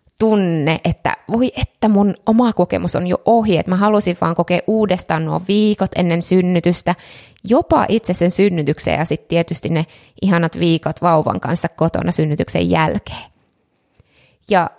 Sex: female